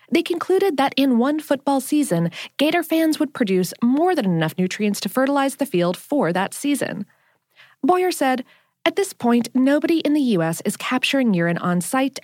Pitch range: 200-300 Hz